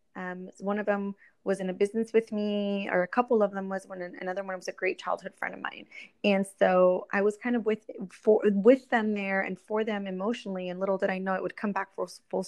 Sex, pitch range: female, 185-215 Hz